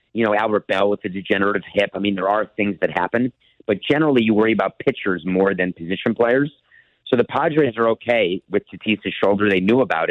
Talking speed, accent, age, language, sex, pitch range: 215 wpm, American, 50-69, English, male, 95-115 Hz